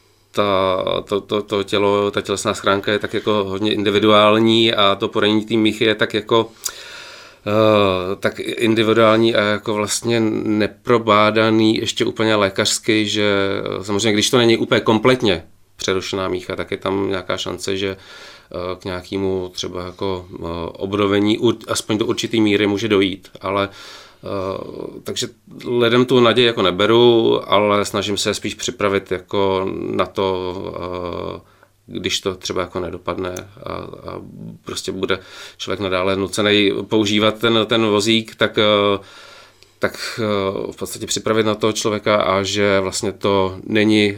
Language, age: Czech, 30-49